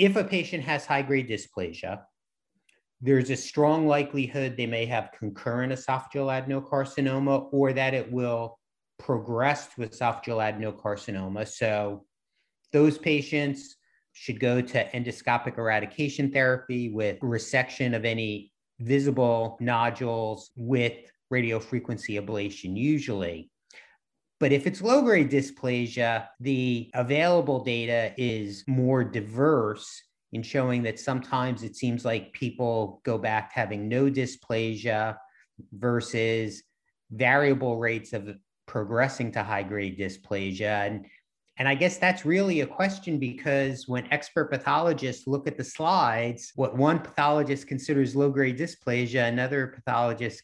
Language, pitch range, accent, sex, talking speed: English, 115-140 Hz, American, male, 120 wpm